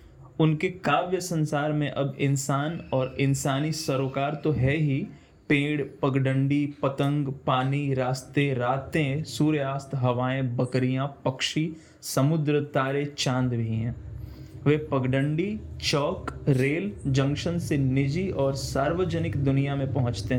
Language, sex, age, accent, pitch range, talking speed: Hindi, male, 20-39, native, 130-150 Hz, 115 wpm